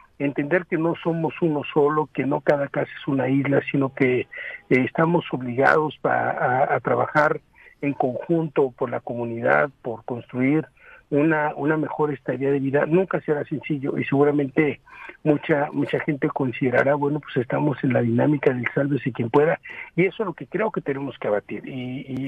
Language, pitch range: Spanish, 130-150 Hz